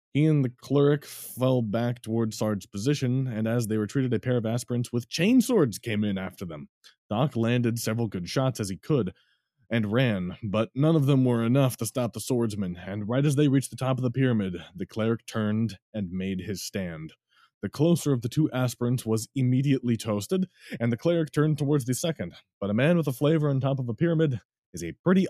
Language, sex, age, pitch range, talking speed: English, male, 20-39, 105-130 Hz, 215 wpm